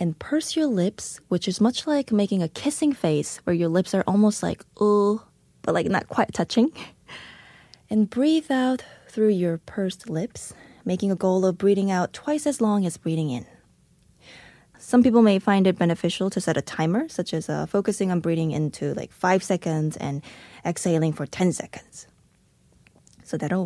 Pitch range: 175-230 Hz